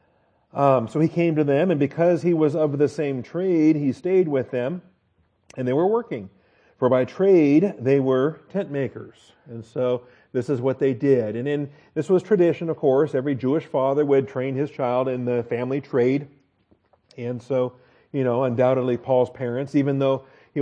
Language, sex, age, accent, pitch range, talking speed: English, male, 40-59, American, 120-140 Hz, 185 wpm